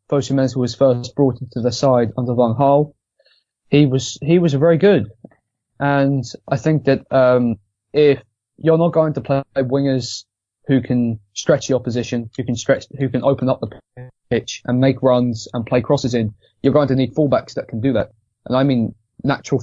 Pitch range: 115-135 Hz